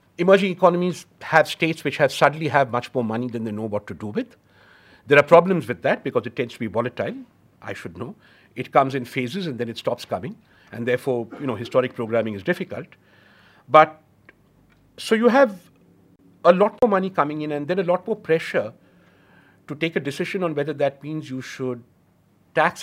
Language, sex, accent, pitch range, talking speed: English, male, Indian, 115-155 Hz, 200 wpm